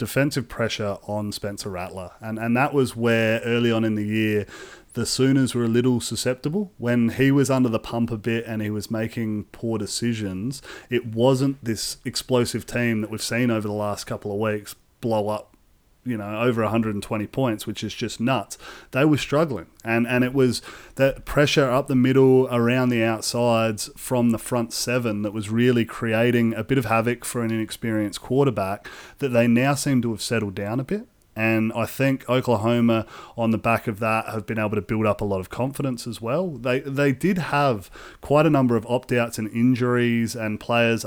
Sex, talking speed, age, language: male, 195 wpm, 30-49, English